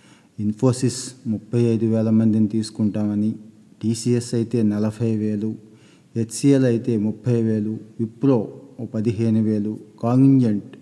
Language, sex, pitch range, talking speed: Telugu, male, 110-130 Hz, 100 wpm